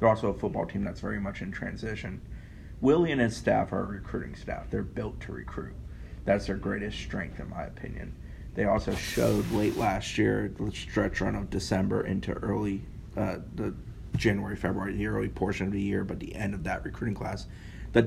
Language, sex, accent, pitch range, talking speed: English, male, American, 95-110 Hz, 200 wpm